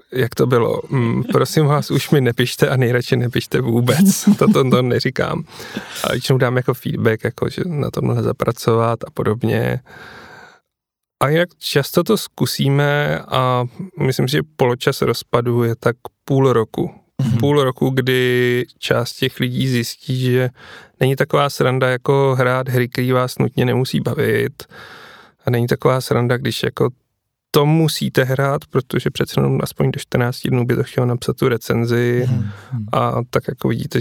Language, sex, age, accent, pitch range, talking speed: Czech, male, 30-49, native, 120-140 Hz, 150 wpm